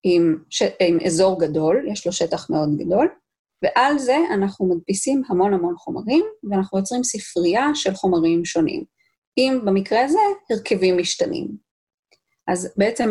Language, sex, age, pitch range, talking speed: Hebrew, female, 30-49, 170-245 Hz, 135 wpm